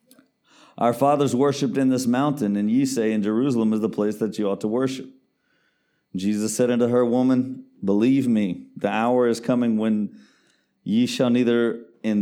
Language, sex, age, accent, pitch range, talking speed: English, male, 40-59, American, 105-130 Hz, 170 wpm